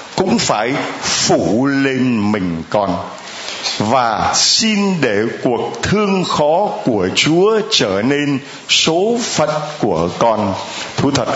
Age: 60-79